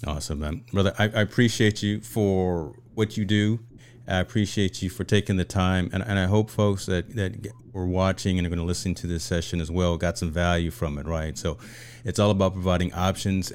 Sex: male